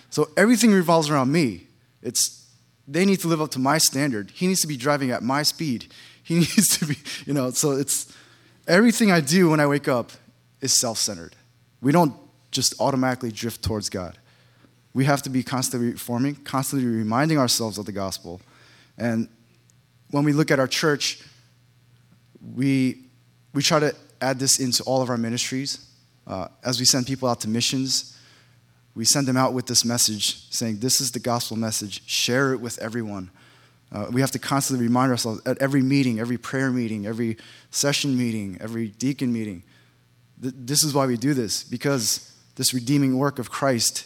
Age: 20-39